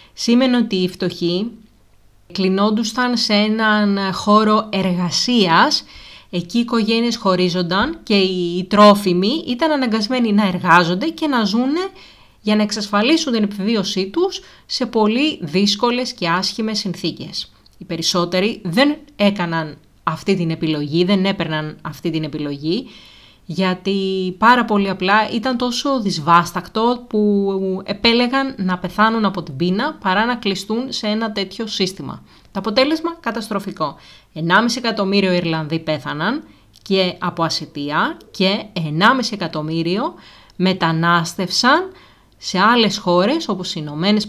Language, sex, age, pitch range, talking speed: Greek, female, 30-49, 170-225 Hz, 120 wpm